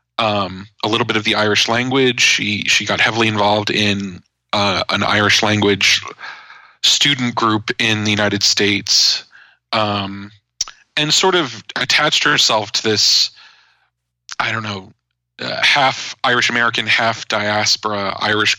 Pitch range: 100-110 Hz